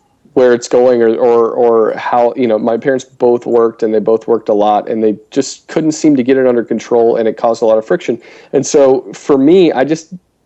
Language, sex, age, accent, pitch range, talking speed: English, male, 40-59, American, 110-130 Hz, 240 wpm